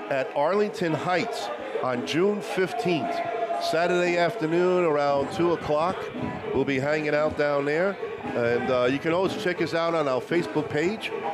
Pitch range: 145-175 Hz